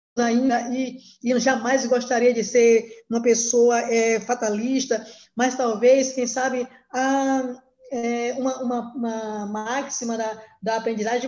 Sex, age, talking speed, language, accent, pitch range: female, 20-39, 110 wpm, Portuguese, Brazilian, 230-270 Hz